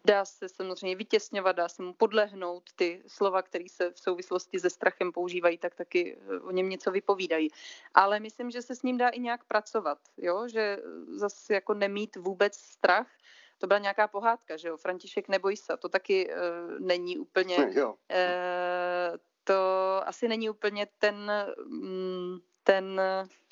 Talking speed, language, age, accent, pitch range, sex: 155 wpm, Czech, 30-49, native, 185-225 Hz, female